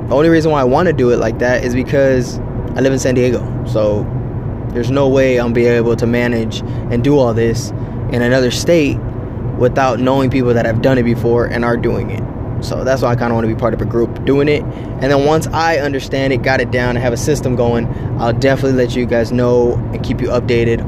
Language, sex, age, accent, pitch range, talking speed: English, male, 20-39, American, 115-125 Hz, 245 wpm